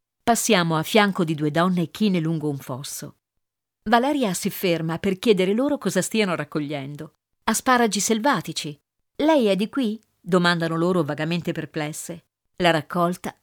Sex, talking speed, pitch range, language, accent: female, 145 wpm, 150-215 Hz, Italian, native